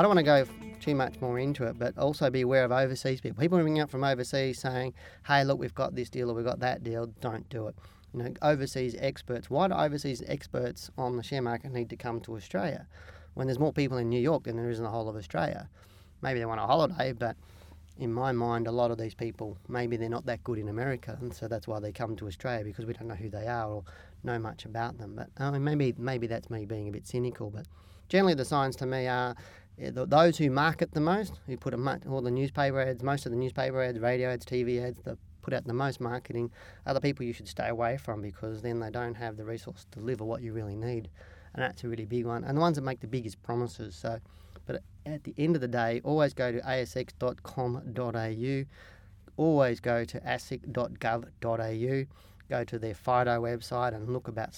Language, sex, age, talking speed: English, male, 30-49, 235 wpm